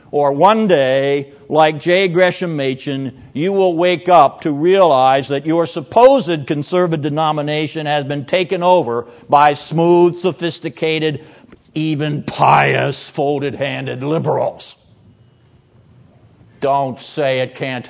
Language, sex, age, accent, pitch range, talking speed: English, male, 60-79, American, 120-155 Hz, 110 wpm